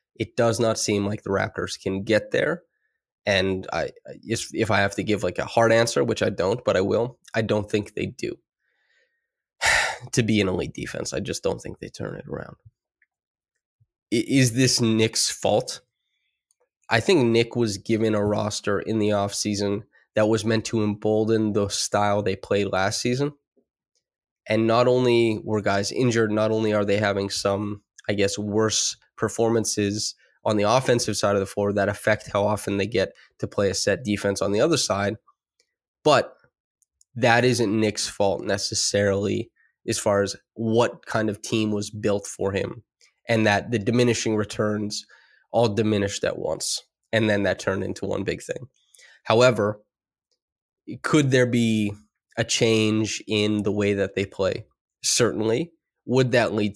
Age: 20-39